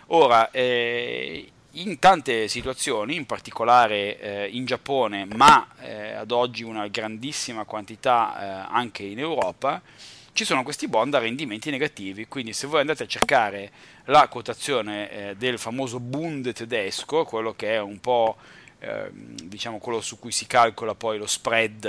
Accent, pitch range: native, 110-140 Hz